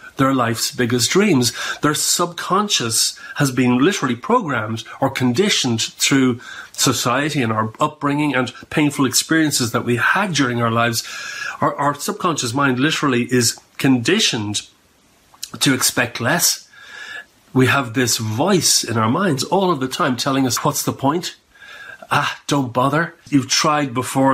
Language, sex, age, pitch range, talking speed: English, male, 40-59, 125-150 Hz, 145 wpm